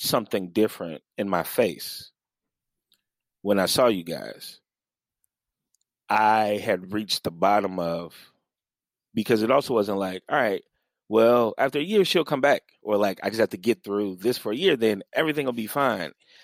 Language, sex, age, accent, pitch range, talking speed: English, male, 30-49, American, 95-130 Hz, 170 wpm